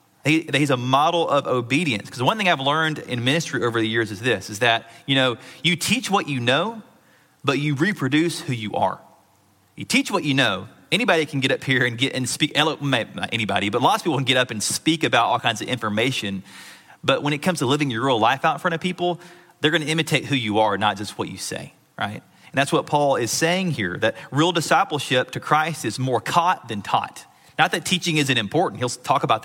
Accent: American